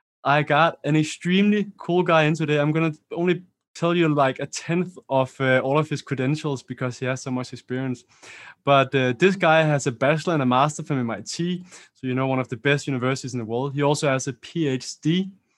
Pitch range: 130-160 Hz